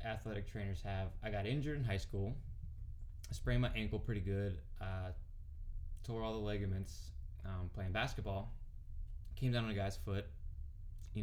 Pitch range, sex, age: 85-110 Hz, male, 20-39